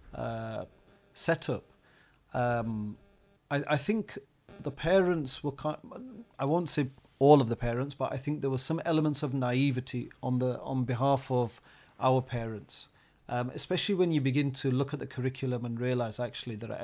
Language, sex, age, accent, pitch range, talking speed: English, male, 40-59, British, 120-140 Hz, 170 wpm